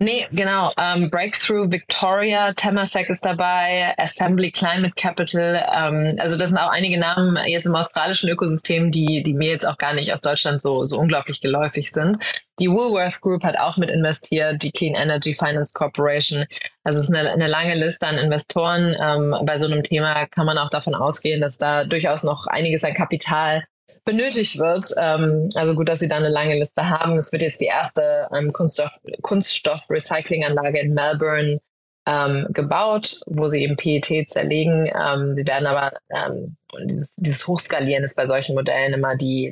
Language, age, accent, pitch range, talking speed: German, 20-39, German, 145-175 Hz, 160 wpm